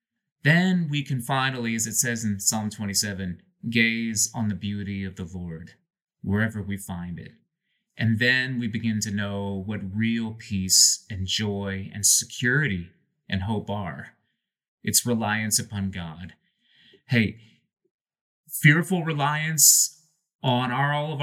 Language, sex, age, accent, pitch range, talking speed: English, male, 30-49, American, 110-165 Hz, 135 wpm